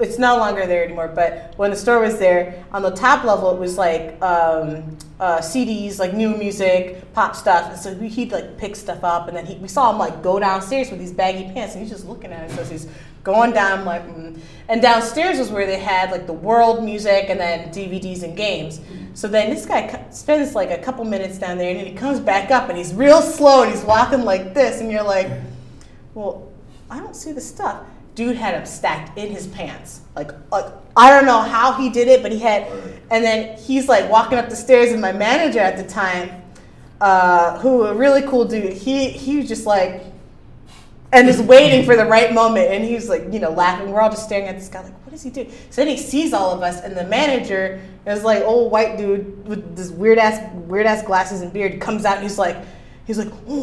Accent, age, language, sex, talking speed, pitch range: American, 30-49, English, female, 235 wpm, 180-235 Hz